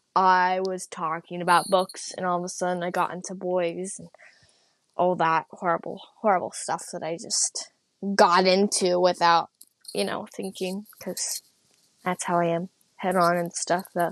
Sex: female